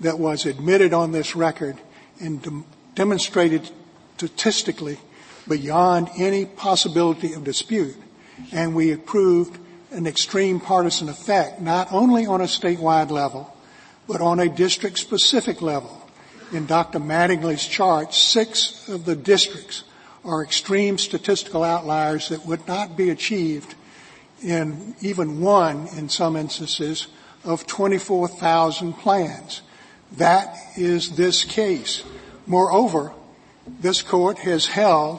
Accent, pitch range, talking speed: American, 160-190 Hz, 115 wpm